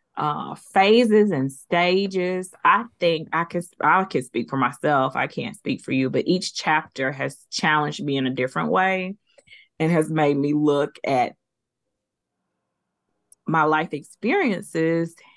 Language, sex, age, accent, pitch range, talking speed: English, female, 20-39, American, 145-180 Hz, 145 wpm